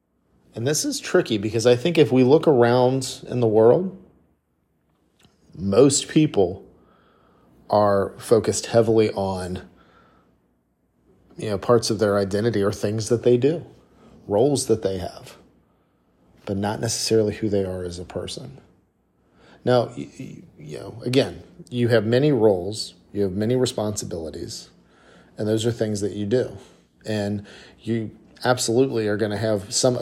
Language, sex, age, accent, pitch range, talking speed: English, male, 40-59, American, 95-115 Hz, 140 wpm